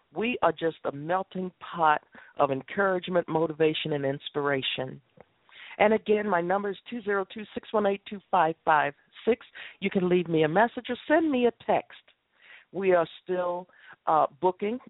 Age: 50-69